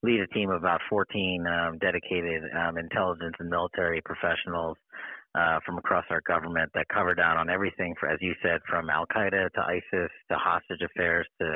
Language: English